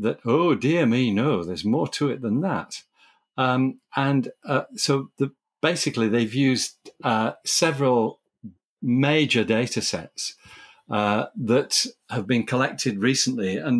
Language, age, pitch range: English, 50-69, 105-135 Hz